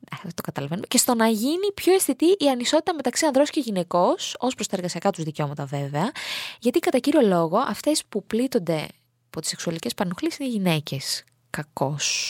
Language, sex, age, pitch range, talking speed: Greek, female, 20-39, 185-275 Hz, 170 wpm